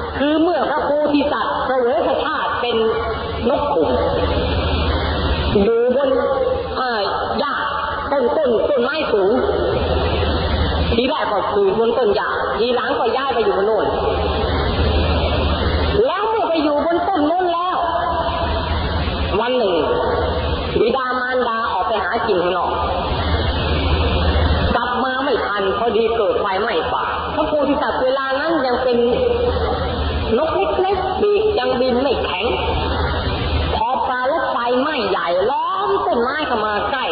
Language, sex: Thai, female